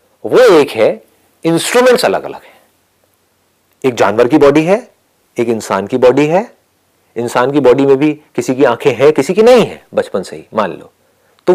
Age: 40-59